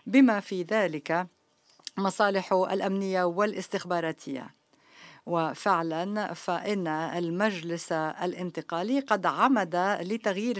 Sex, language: female, Arabic